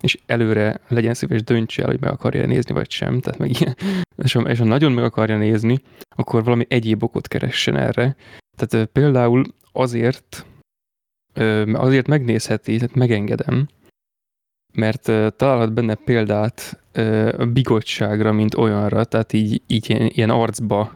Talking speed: 155 wpm